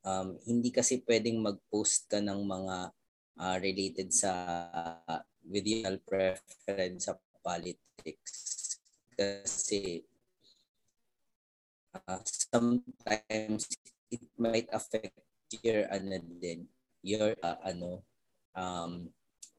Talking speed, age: 85 wpm, 20-39